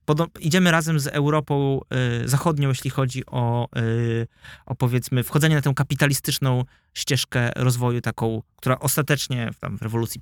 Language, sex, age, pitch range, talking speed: Polish, male, 20-39, 115-145 Hz, 130 wpm